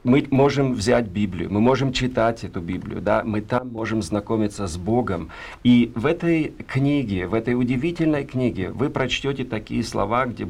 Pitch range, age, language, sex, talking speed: 105-130 Hz, 40-59, Russian, male, 165 wpm